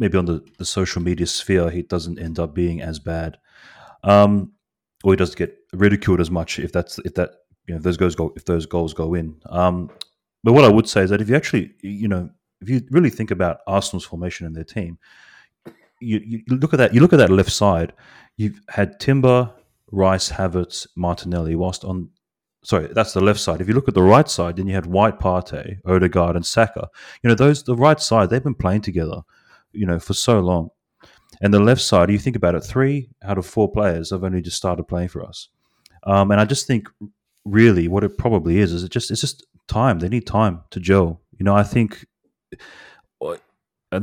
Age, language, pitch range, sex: 30-49, English, 85-110 Hz, male